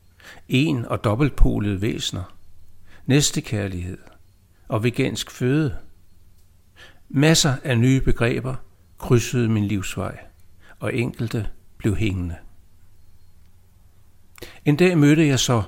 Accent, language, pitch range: native, Danish, 90-130 Hz